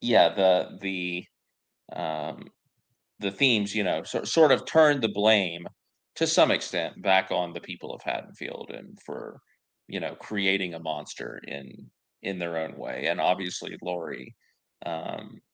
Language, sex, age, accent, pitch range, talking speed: English, male, 30-49, American, 90-110 Hz, 150 wpm